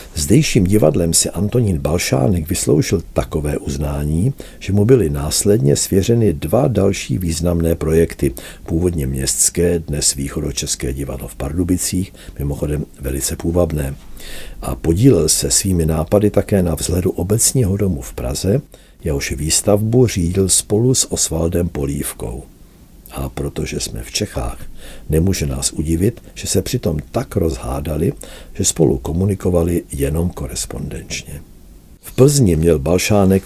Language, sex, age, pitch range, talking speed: Czech, male, 60-79, 75-100 Hz, 120 wpm